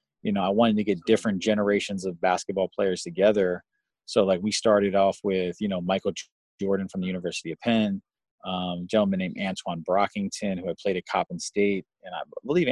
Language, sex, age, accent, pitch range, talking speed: English, male, 30-49, American, 95-105 Hz, 200 wpm